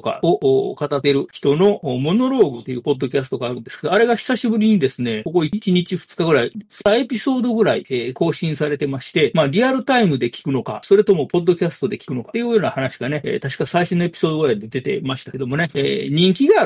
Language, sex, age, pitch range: Japanese, male, 40-59, 135-205 Hz